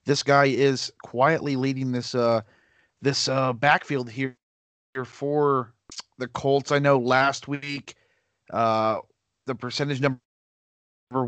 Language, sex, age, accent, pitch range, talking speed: English, male, 30-49, American, 120-145 Hz, 115 wpm